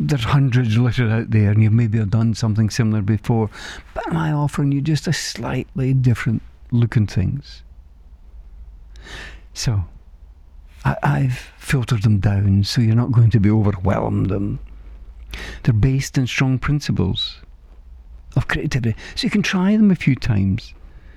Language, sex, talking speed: English, male, 150 wpm